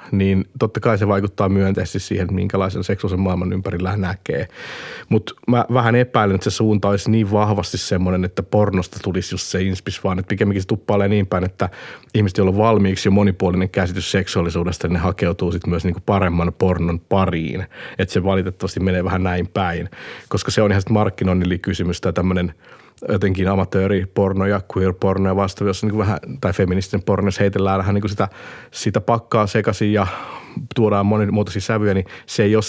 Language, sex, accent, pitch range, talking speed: Finnish, male, native, 90-105 Hz, 175 wpm